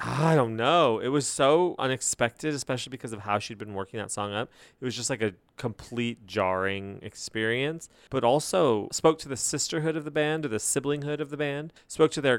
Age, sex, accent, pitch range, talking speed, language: 30-49, male, American, 110-145 Hz, 210 wpm, English